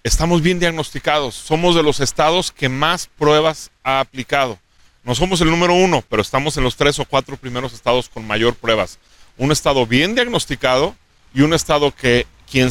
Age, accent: 40-59, Mexican